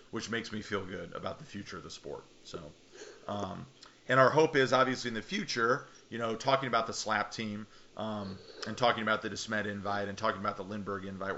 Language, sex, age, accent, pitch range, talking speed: English, male, 40-59, American, 100-115 Hz, 215 wpm